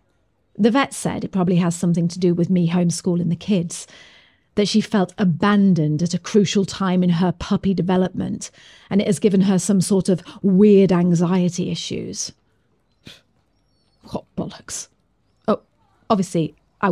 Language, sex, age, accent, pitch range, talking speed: English, female, 40-59, British, 175-220 Hz, 150 wpm